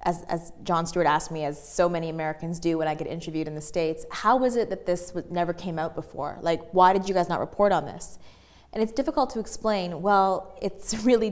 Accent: American